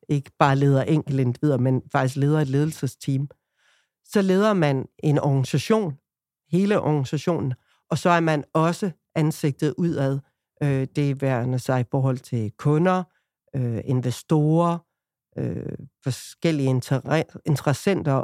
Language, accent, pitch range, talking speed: Danish, native, 135-170 Hz, 120 wpm